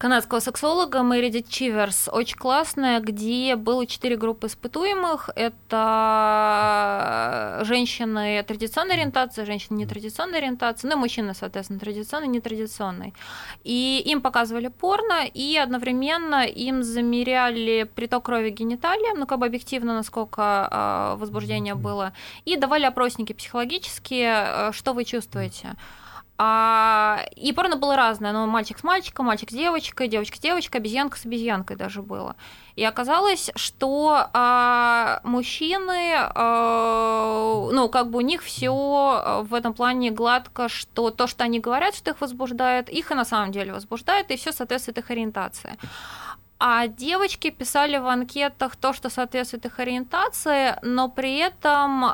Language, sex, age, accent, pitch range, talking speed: Russian, female, 20-39, native, 225-275 Hz, 140 wpm